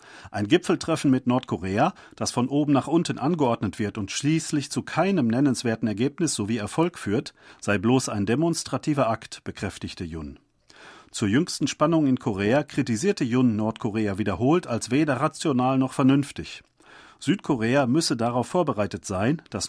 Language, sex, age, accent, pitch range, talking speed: German, male, 40-59, German, 115-150 Hz, 145 wpm